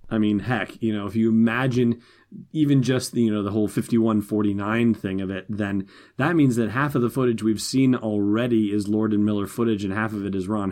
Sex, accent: male, American